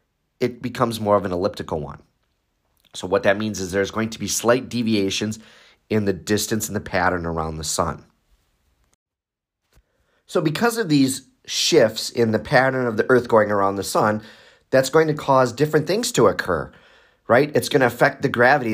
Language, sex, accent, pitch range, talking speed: English, male, American, 115-145 Hz, 185 wpm